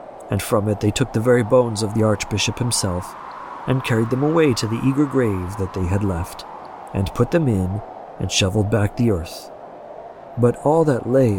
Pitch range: 100-130 Hz